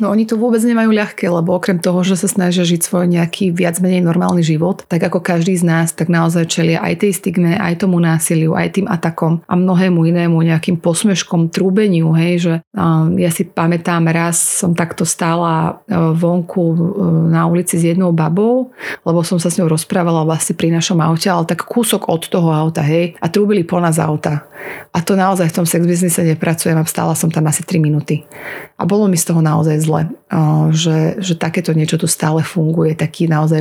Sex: female